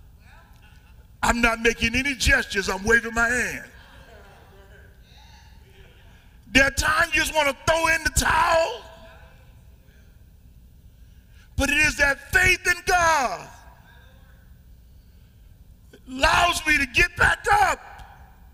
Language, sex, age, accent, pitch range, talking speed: English, male, 40-59, American, 195-310 Hz, 110 wpm